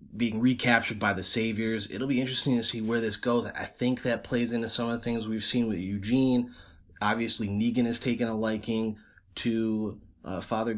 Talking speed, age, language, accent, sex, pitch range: 195 wpm, 20-39, English, American, male, 100-115 Hz